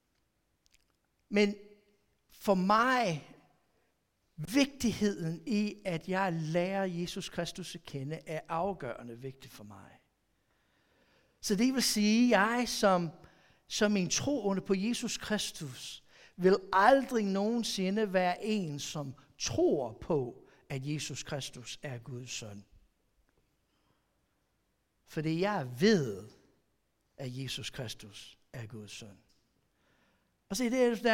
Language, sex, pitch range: Danish, male, 160-225 Hz